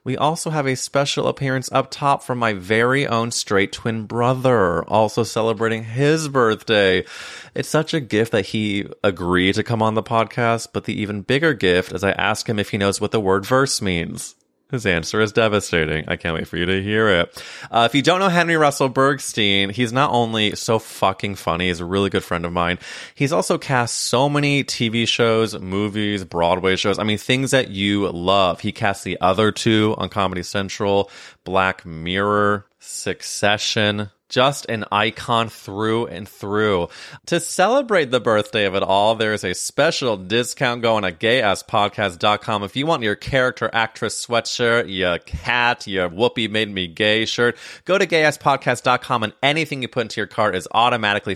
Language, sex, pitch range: English, male, 100-125 Hz